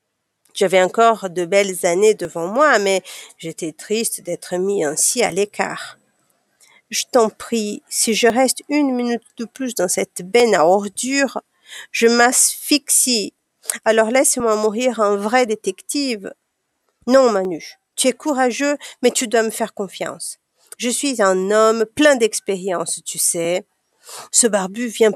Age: 50-69